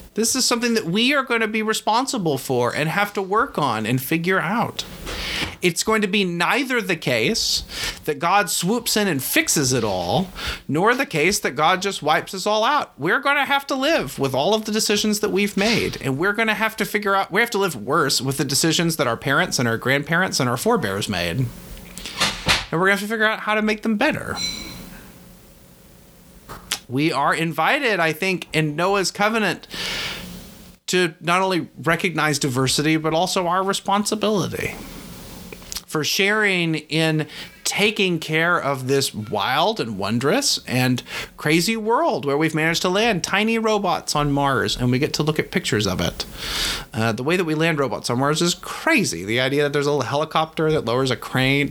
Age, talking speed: 30-49, 190 wpm